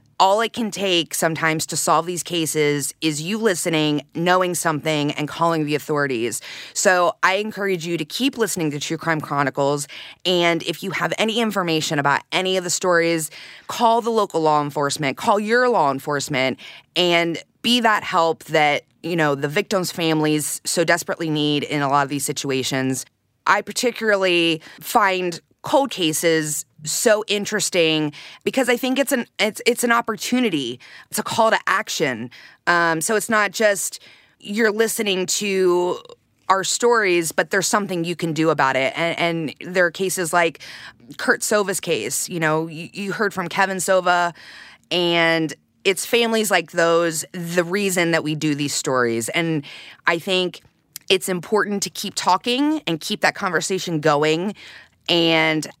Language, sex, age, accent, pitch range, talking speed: English, female, 20-39, American, 155-200 Hz, 160 wpm